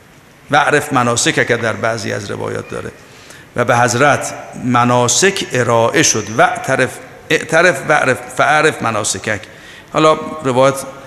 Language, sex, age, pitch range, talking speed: Persian, male, 50-69, 115-140 Hz, 130 wpm